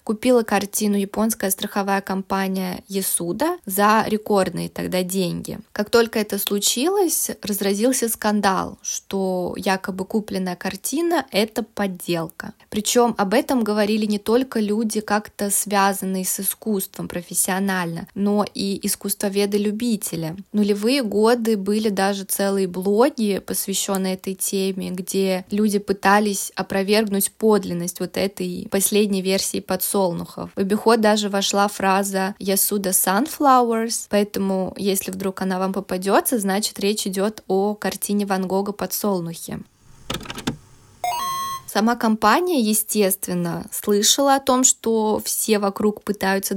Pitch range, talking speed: 190-215 Hz, 110 wpm